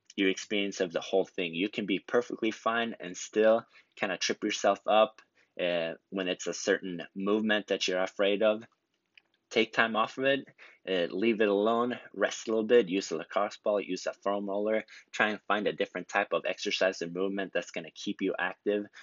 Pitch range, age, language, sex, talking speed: 95-110 Hz, 20-39, English, male, 205 wpm